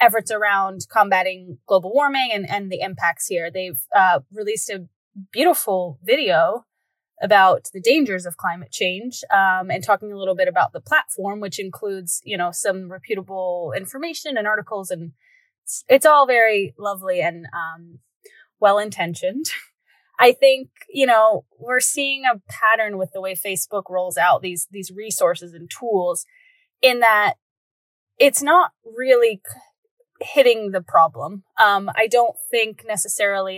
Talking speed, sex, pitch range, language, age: 145 wpm, female, 185-260 Hz, English, 20-39